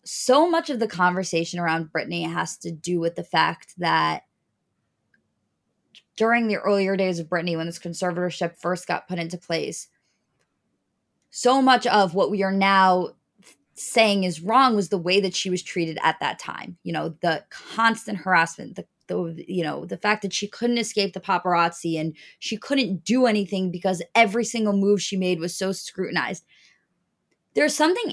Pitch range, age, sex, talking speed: 175-215 Hz, 20-39, female, 175 wpm